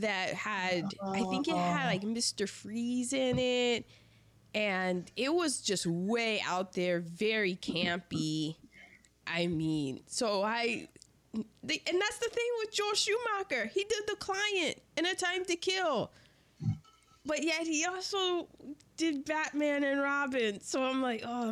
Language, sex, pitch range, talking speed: English, female, 175-250 Hz, 145 wpm